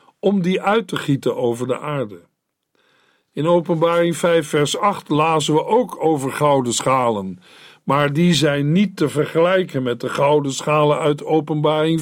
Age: 50-69